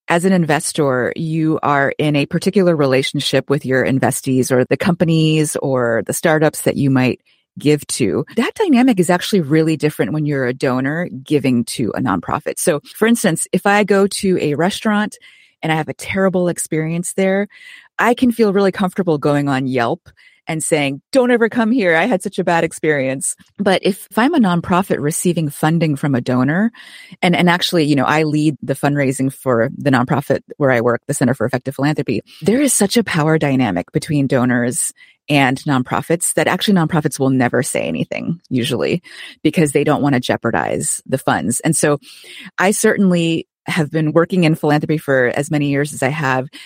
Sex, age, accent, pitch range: female, 30-49, American, 135-185 Hz